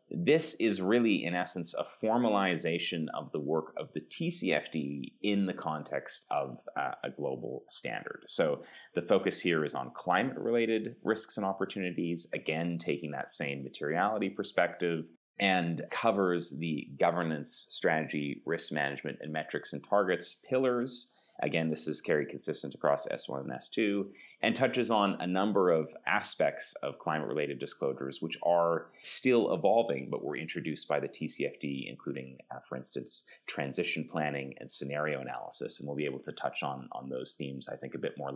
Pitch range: 75-105 Hz